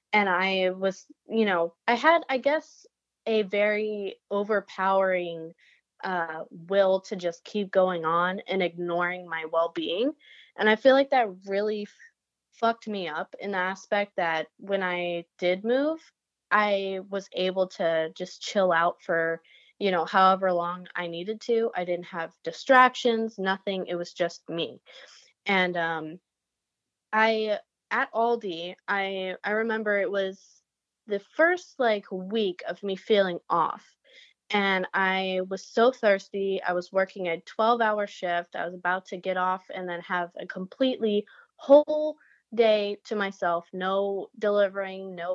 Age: 20-39